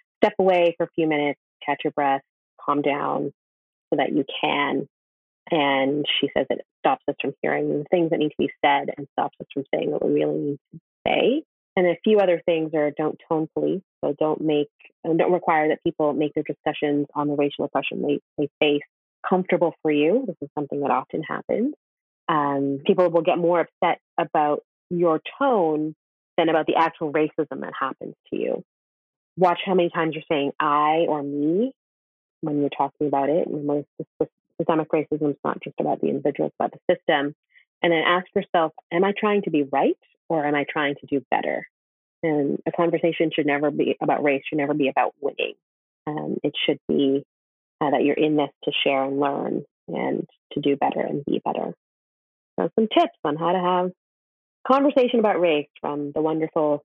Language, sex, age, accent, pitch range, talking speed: English, female, 30-49, American, 145-170 Hz, 195 wpm